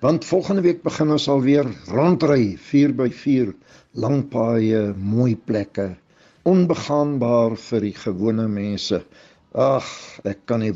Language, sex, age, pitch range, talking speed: English, male, 60-79, 110-135 Hz, 125 wpm